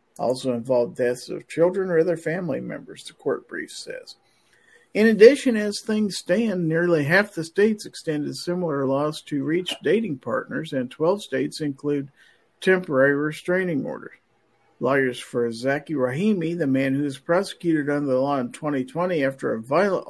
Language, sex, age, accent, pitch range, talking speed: English, male, 50-69, American, 140-195 Hz, 160 wpm